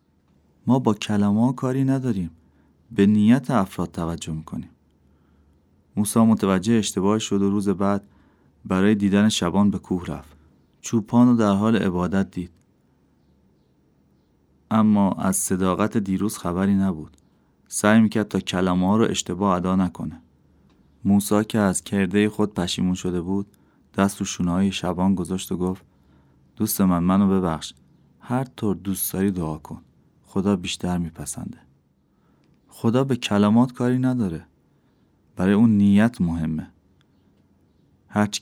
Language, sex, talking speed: Persian, male, 125 wpm